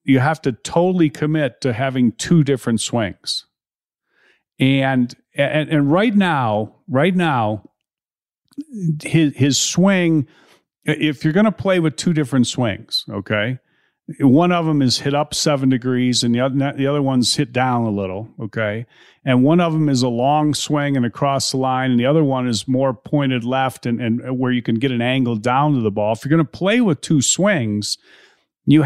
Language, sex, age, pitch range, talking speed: English, male, 50-69, 125-165 Hz, 185 wpm